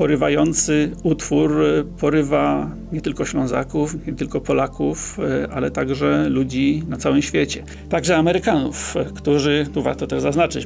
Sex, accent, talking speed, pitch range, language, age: male, native, 125 wpm, 130-175 Hz, Polish, 40-59